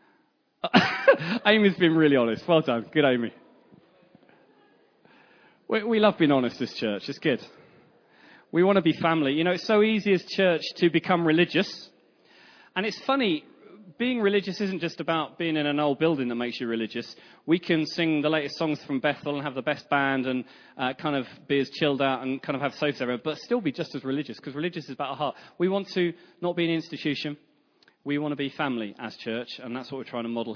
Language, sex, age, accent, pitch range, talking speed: English, male, 30-49, British, 125-170 Hz, 210 wpm